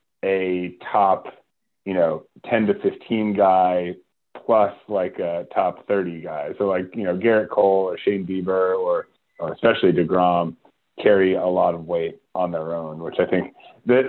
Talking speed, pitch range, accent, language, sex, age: 165 wpm, 90-110 Hz, American, English, male, 30-49